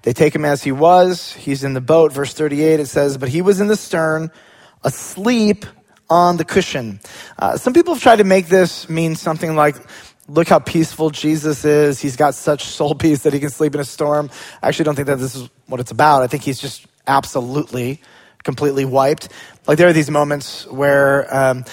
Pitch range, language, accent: 140-175 Hz, English, American